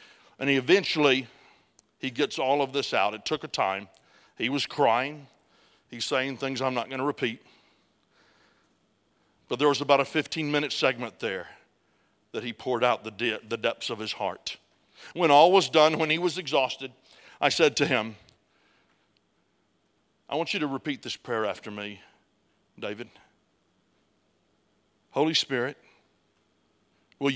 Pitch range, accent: 115-145 Hz, American